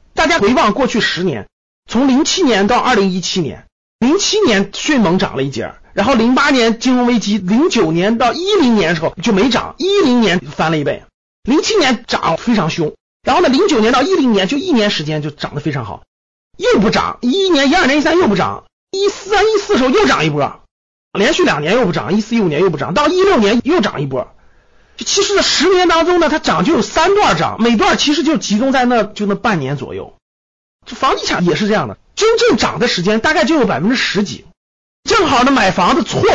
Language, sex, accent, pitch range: Chinese, male, native, 190-310 Hz